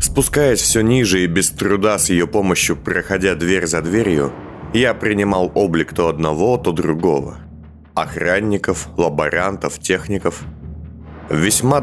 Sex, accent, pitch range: male, native, 80-105 Hz